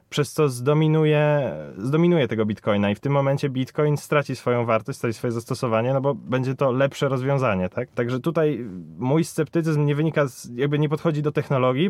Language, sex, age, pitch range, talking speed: Polish, male, 20-39, 120-150 Hz, 180 wpm